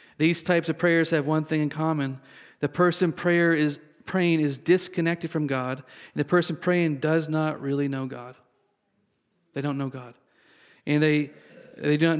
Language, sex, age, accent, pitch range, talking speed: English, male, 40-59, American, 135-160 Hz, 170 wpm